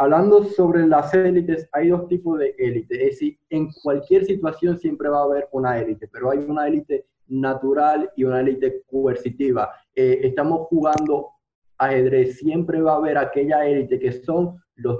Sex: male